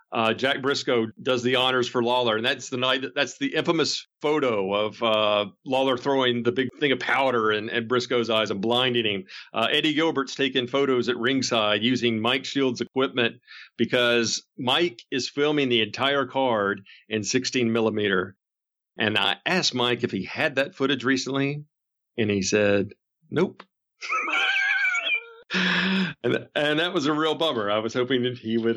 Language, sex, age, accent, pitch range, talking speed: English, male, 50-69, American, 115-145 Hz, 170 wpm